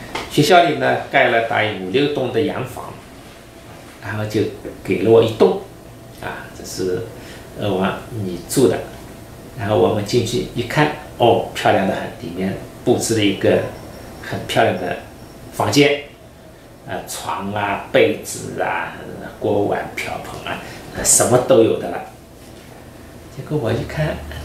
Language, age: Chinese, 50-69